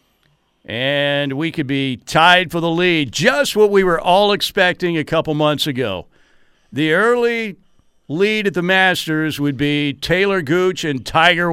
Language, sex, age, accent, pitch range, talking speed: English, male, 50-69, American, 125-160 Hz, 155 wpm